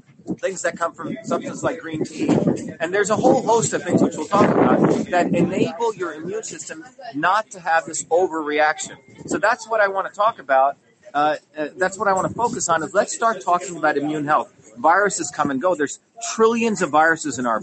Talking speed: 215 wpm